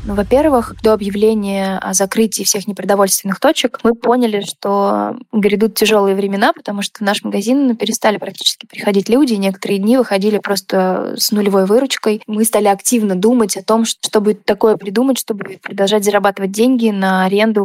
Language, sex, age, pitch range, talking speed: Russian, female, 20-39, 195-225 Hz, 155 wpm